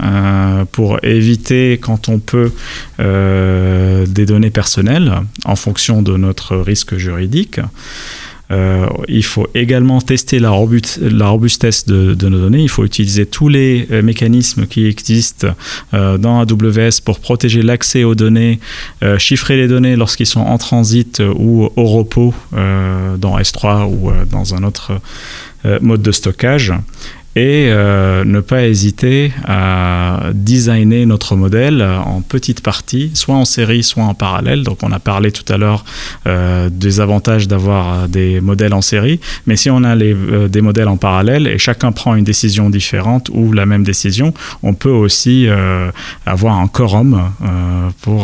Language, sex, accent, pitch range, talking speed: French, male, French, 95-120 Hz, 155 wpm